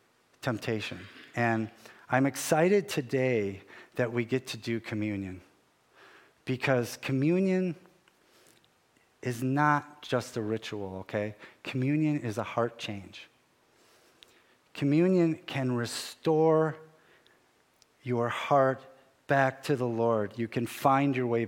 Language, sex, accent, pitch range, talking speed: English, male, American, 110-145 Hz, 105 wpm